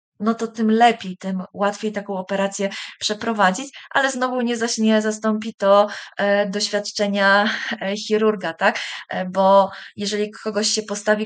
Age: 20-39